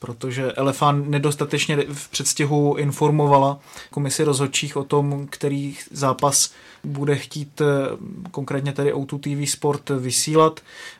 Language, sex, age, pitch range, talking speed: Czech, male, 20-39, 135-150 Hz, 110 wpm